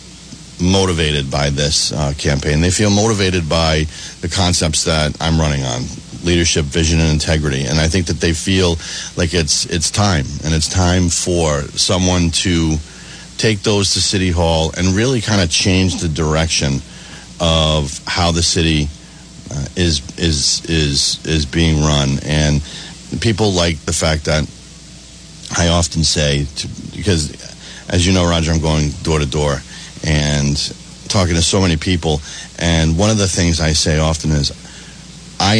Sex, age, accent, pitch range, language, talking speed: male, 40-59, American, 75-90 Hz, English, 160 wpm